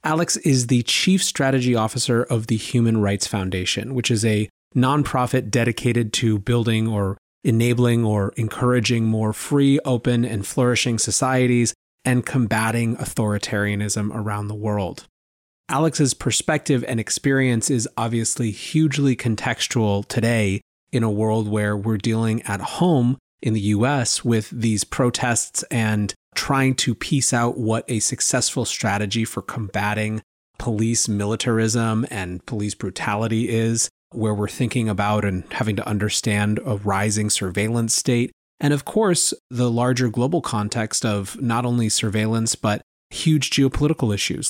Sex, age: male, 30-49